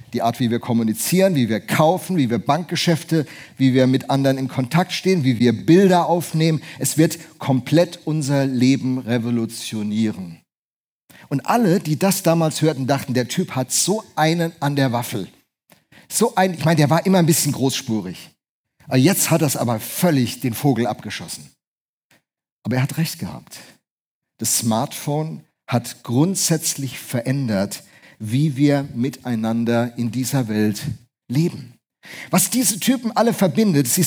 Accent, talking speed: German, 150 wpm